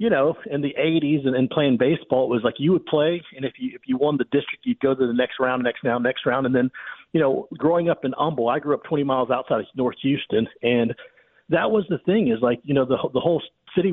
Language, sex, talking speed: English, male, 270 wpm